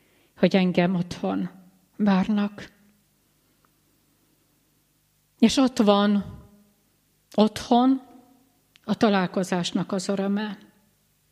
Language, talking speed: Hungarian, 65 wpm